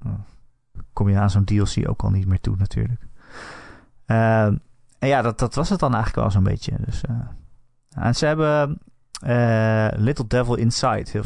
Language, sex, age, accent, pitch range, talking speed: Dutch, male, 30-49, Dutch, 105-135 Hz, 165 wpm